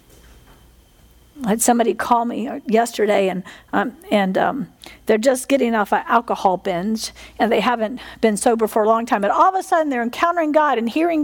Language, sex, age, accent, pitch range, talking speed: English, female, 50-69, American, 210-285 Hz, 190 wpm